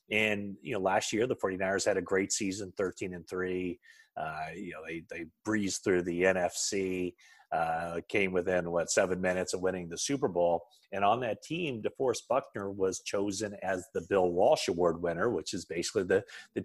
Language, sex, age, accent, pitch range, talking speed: English, male, 30-49, American, 90-110 Hz, 185 wpm